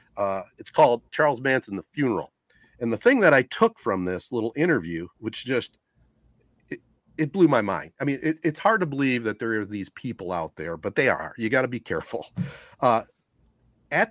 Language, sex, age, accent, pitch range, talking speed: English, male, 40-59, American, 110-155 Hz, 200 wpm